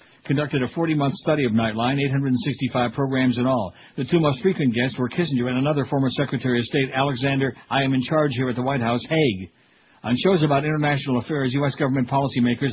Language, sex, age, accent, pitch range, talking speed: English, male, 60-79, American, 125-150 Hz, 200 wpm